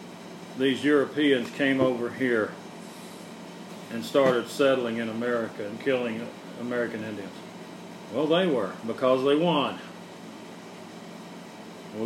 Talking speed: 105 wpm